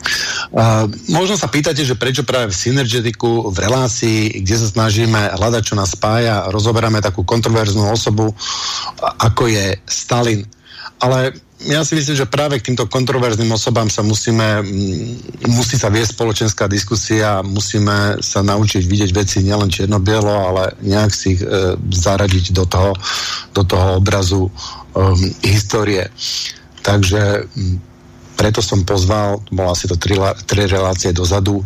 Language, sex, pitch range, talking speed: Slovak, male, 100-115 Hz, 140 wpm